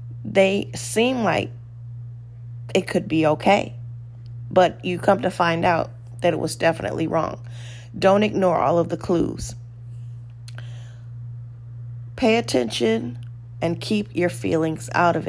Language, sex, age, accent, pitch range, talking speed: English, female, 30-49, American, 120-185 Hz, 125 wpm